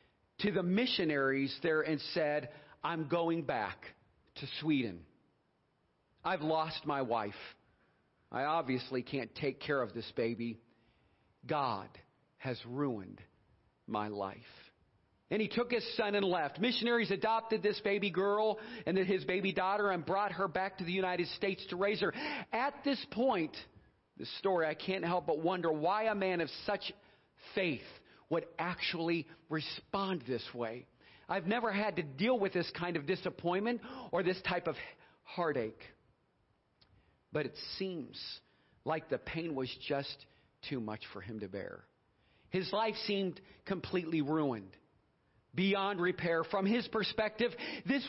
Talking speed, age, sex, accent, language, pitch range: 145 wpm, 40-59, male, American, English, 140-200 Hz